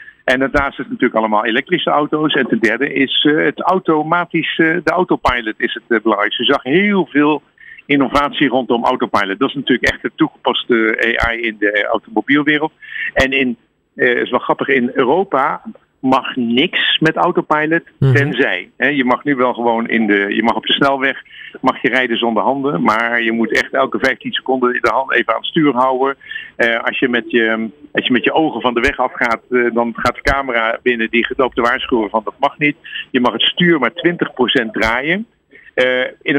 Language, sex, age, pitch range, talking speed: Dutch, male, 50-69, 115-150 Hz, 195 wpm